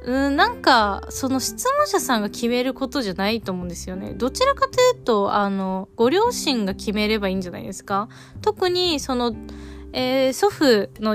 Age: 20-39